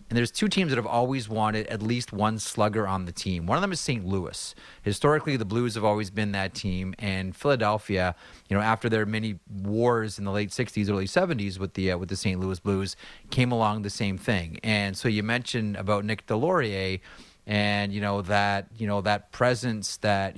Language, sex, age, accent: English, male, 30-49, American